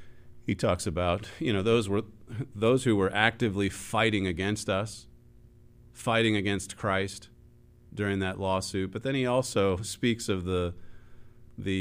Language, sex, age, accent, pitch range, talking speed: English, male, 40-59, American, 105-125 Hz, 140 wpm